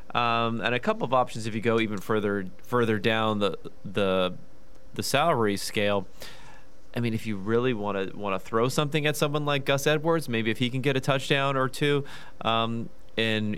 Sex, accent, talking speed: male, American, 200 wpm